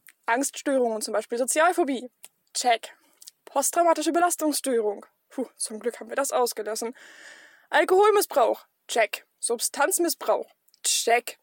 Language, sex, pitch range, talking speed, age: German, female, 240-290 Hz, 95 wpm, 20-39